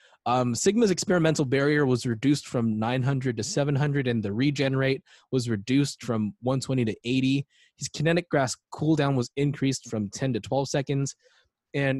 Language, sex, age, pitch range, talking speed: English, male, 20-39, 120-150 Hz, 155 wpm